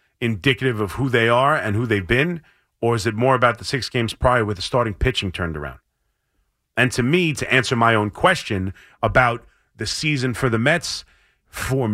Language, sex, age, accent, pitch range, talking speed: English, male, 40-59, American, 110-145 Hz, 195 wpm